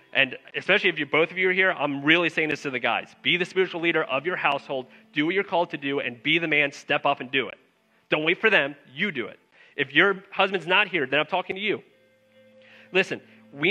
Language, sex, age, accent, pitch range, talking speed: English, male, 30-49, American, 150-195 Hz, 250 wpm